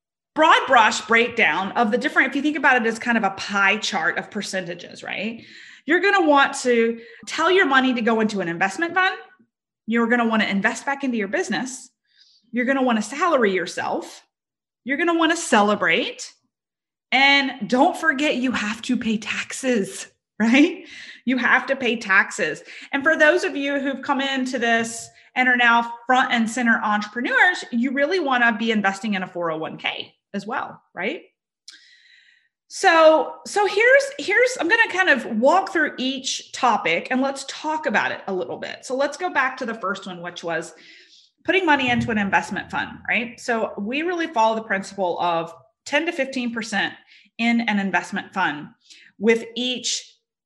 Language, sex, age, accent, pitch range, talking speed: English, female, 30-49, American, 220-290 Hz, 180 wpm